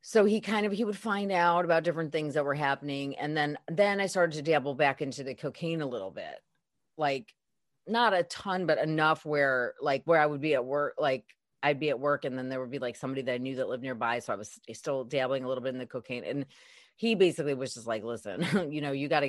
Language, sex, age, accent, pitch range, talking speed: English, female, 30-49, American, 130-170 Hz, 260 wpm